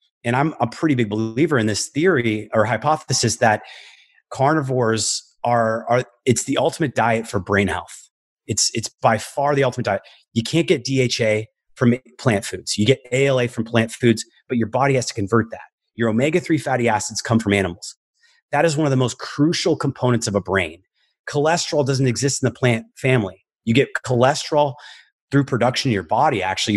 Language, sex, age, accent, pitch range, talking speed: English, male, 30-49, American, 110-130 Hz, 190 wpm